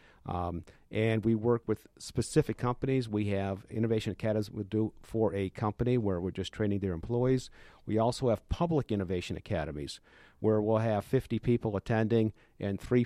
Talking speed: 170 wpm